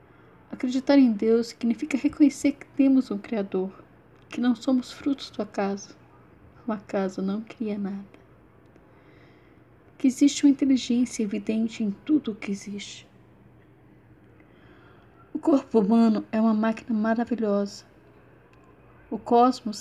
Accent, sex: Brazilian, female